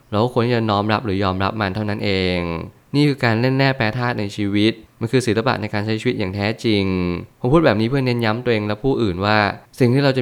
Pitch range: 100-120 Hz